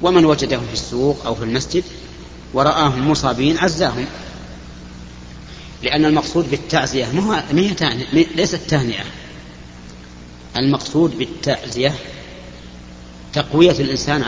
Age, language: 40-59, Arabic